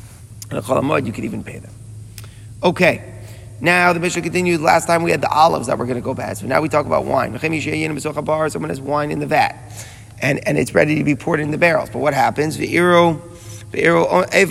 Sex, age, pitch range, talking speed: male, 30-49, 115-160 Hz, 200 wpm